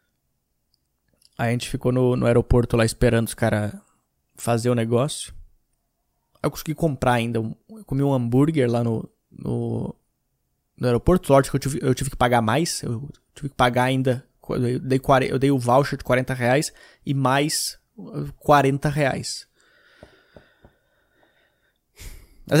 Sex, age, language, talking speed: male, 20-39, Portuguese, 150 wpm